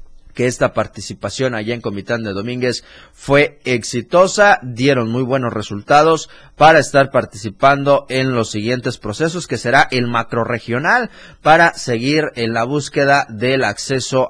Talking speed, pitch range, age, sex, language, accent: 135 wpm, 120-165 Hz, 30-49, male, Spanish, Mexican